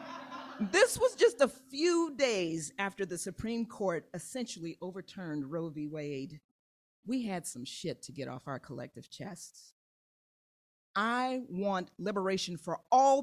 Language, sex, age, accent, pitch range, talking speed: English, female, 40-59, American, 175-255 Hz, 135 wpm